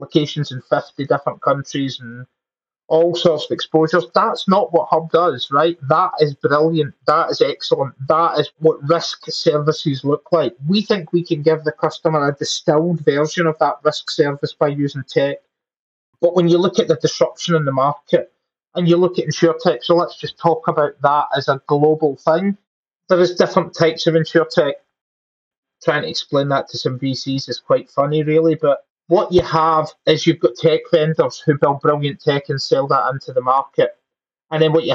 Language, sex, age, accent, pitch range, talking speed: English, male, 30-49, British, 135-165 Hz, 195 wpm